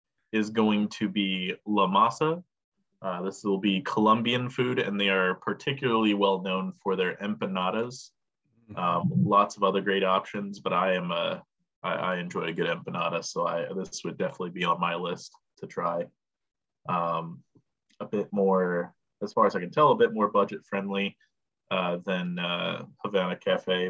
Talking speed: 170 wpm